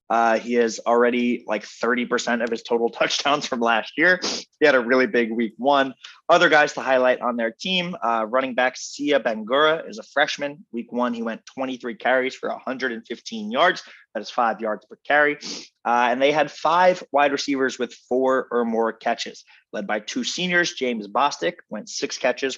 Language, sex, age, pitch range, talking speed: English, male, 20-39, 120-160 Hz, 190 wpm